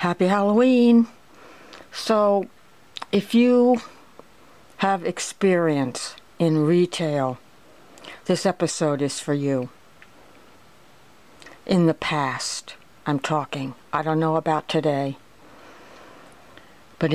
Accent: American